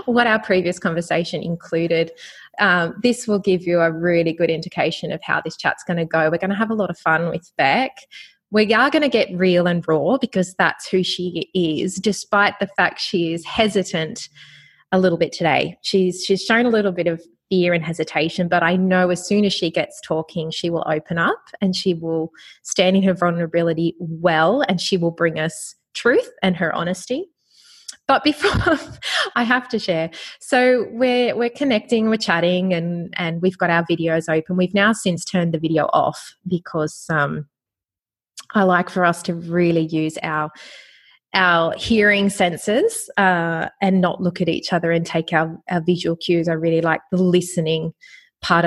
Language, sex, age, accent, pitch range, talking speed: English, female, 20-39, Australian, 165-200 Hz, 185 wpm